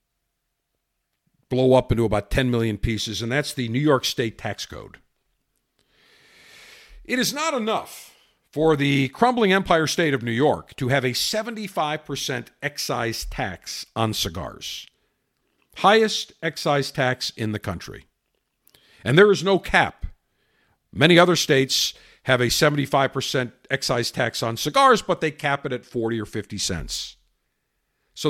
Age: 50-69